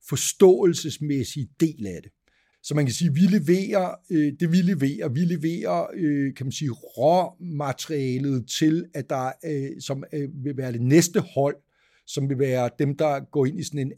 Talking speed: 165 wpm